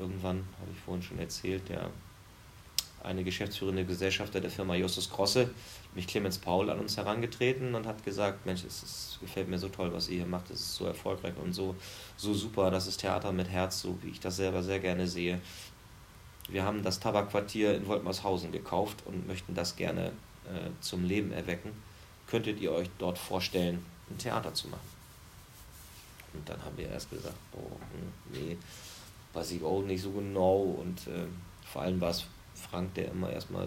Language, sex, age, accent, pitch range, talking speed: German, male, 30-49, German, 90-105 Hz, 185 wpm